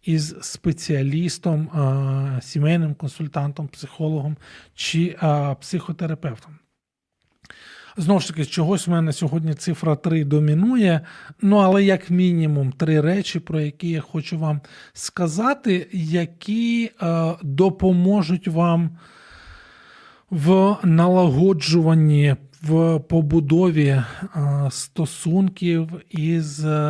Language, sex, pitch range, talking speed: Ukrainian, male, 150-175 Hz, 95 wpm